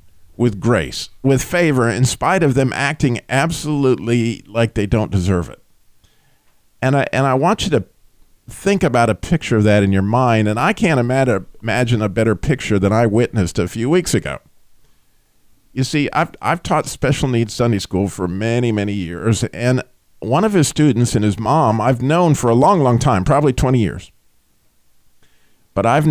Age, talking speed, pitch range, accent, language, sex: 50-69, 180 wpm, 100-140 Hz, American, English, male